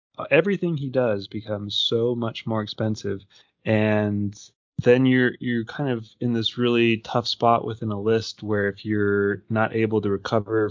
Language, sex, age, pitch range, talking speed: English, male, 20-39, 110-125 Hz, 160 wpm